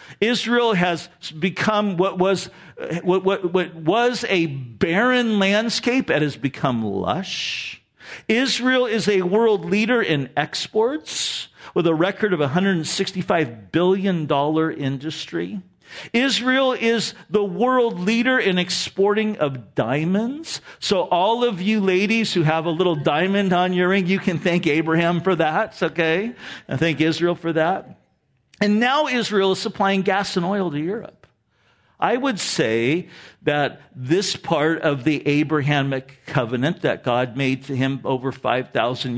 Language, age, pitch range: English, 50-69, 135-200 Hz